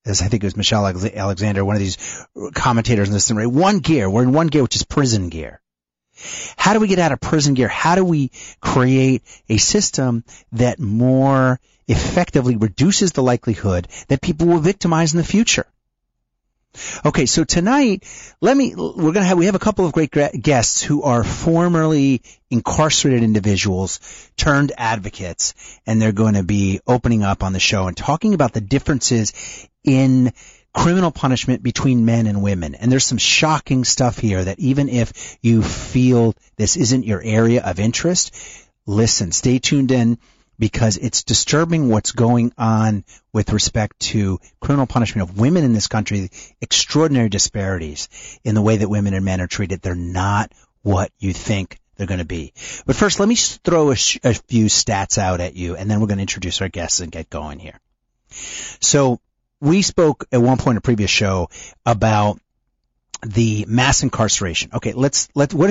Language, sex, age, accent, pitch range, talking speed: English, male, 30-49, American, 100-140 Hz, 180 wpm